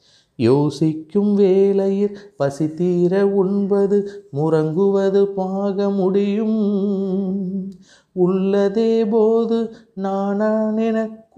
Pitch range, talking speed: 145-200 Hz, 55 wpm